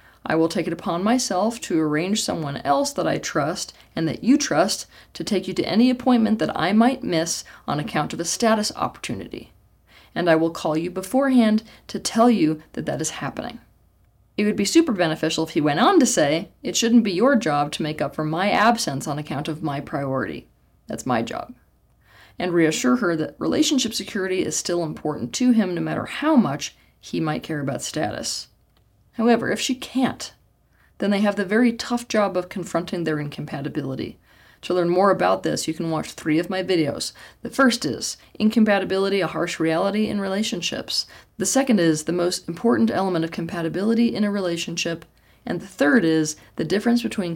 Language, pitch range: English, 160-225 Hz